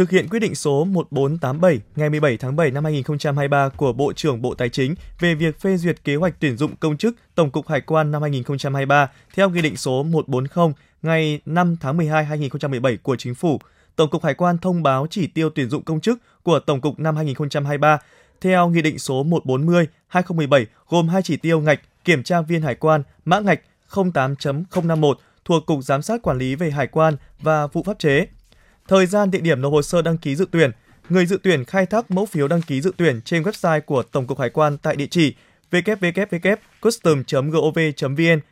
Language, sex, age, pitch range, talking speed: Vietnamese, male, 20-39, 145-175 Hz, 200 wpm